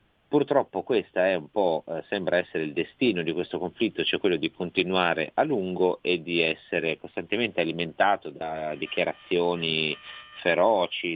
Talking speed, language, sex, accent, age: 130 wpm, Italian, male, native, 40-59